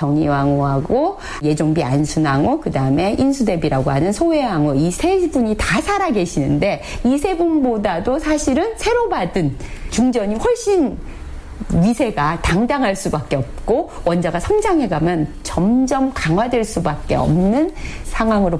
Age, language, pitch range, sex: 40-59, Korean, 150-245 Hz, female